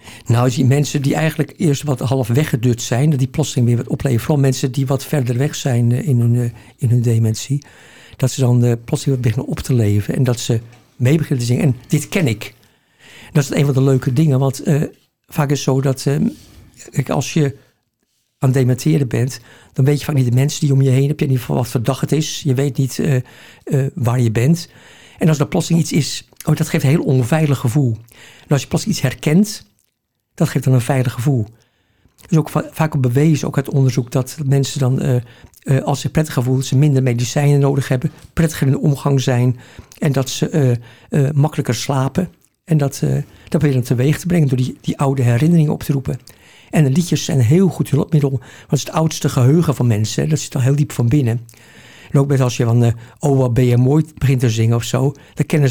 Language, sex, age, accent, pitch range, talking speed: Dutch, male, 60-79, Dutch, 125-150 Hz, 235 wpm